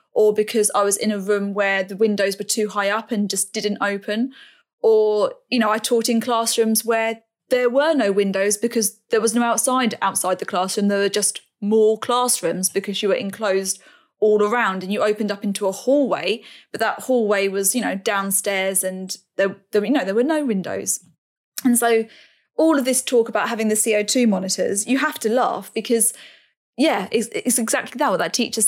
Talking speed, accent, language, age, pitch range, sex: 200 wpm, British, English, 20-39, 200-245 Hz, female